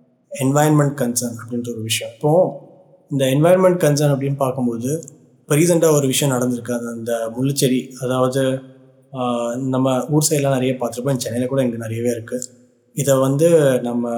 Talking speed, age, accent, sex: 135 wpm, 20-39, native, male